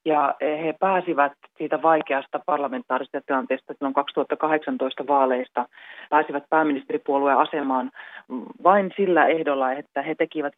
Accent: native